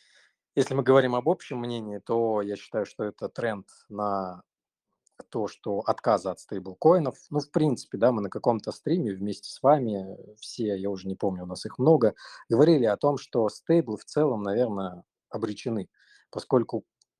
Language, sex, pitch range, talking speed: Russian, male, 105-135 Hz, 170 wpm